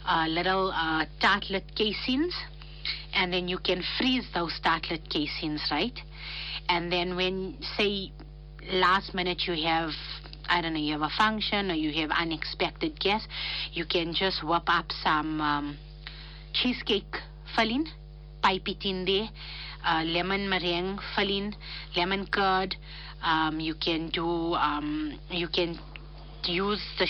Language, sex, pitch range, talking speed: English, female, 155-190 Hz, 135 wpm